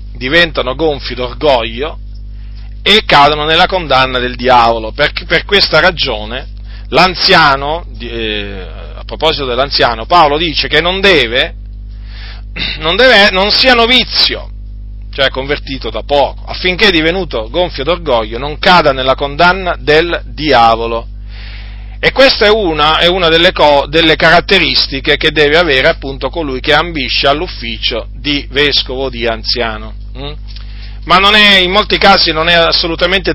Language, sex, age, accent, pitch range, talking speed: Italian, male, 40-59, native, 105-165 Hz, 130 wpm